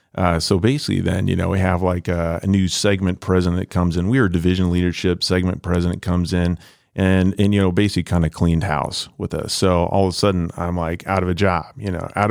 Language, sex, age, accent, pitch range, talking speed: English, male, 30-49, American, 90-105 Hz, 245 wpm